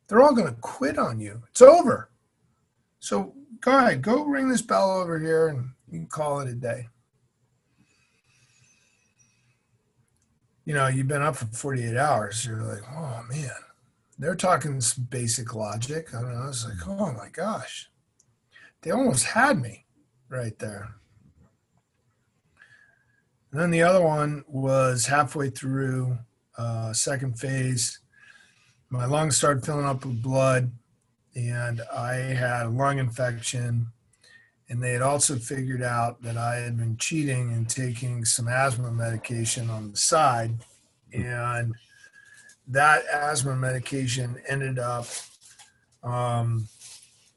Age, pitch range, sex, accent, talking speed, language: 50-69, 120-140 Hz, male, American, 135 wpm, English